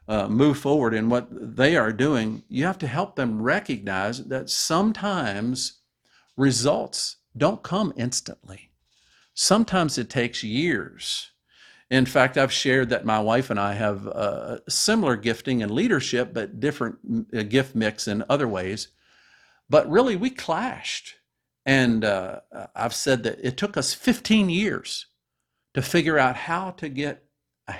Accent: American